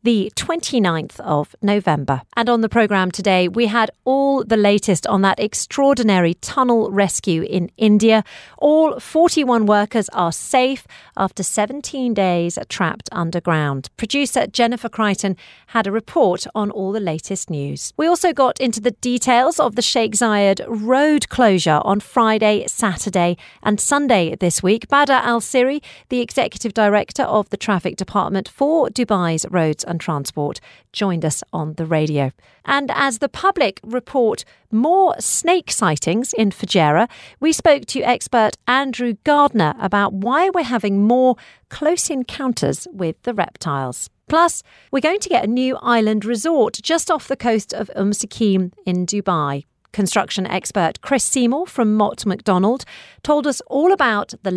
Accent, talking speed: British, 145 wpm